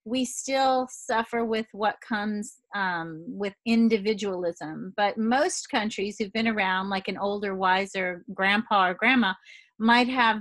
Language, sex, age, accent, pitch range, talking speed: English, female, 40-59, American, 200-245 Hz, 140 wpm